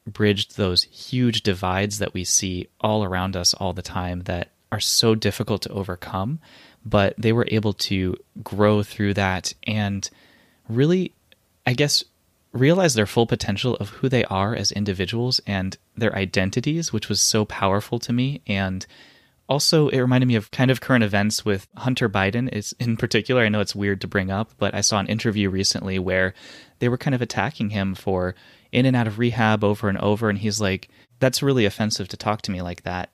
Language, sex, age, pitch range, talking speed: English, male, 20-39, 95-115 Hz, 195 wpm